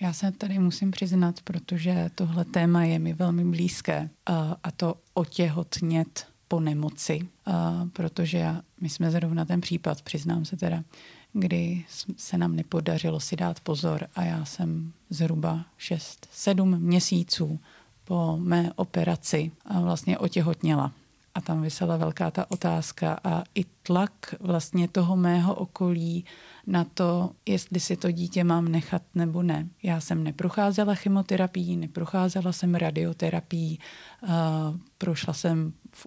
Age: 30-49